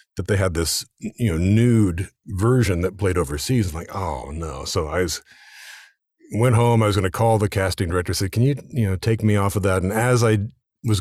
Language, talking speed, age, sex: English, 230 wpm, 50-69, male